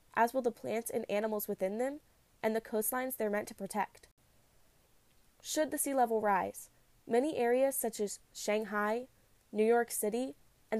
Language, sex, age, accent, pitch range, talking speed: English, female, 10-29, American, 210-255 Hz, 160 wpm